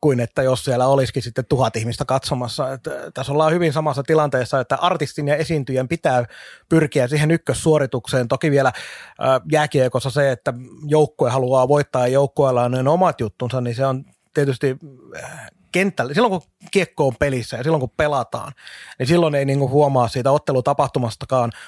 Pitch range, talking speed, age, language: 130-155 Hz, 160 wpm, 30-49, Finnish